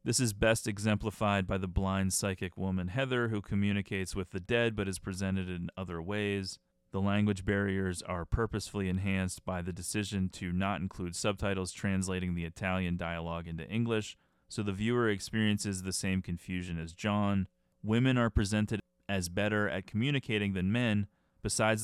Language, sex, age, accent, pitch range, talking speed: English, male, 30-49, American, 90-105 Hz, 160 wpm